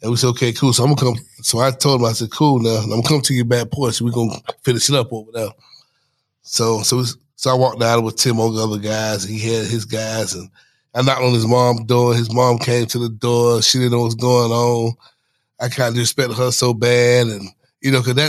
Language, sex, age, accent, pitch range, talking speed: English, male, 20-39, American, 115-130 Hz, 265 wpm